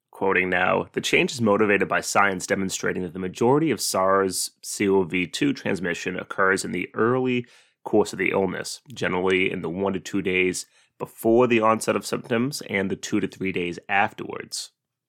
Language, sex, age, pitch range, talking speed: English, male, 30-49, 95-110 Hz, 165 wpm